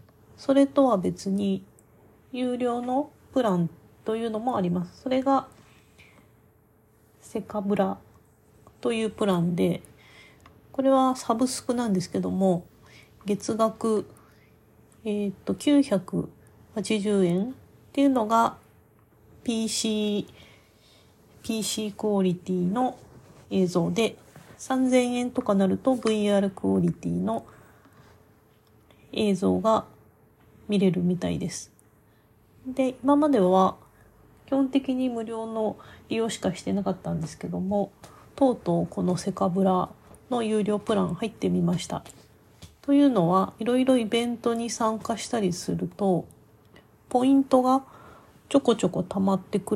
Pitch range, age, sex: 170-235 Hz, 40-59, female